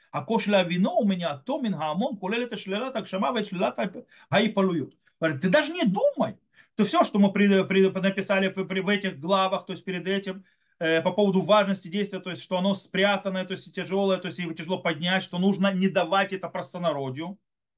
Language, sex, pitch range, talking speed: Russian, male, 160-210 Hz, 190 wpm